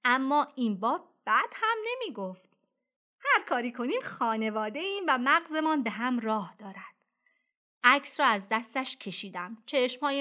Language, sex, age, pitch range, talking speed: Persian, female, 30-49, 220-295 Hz, 135 wpm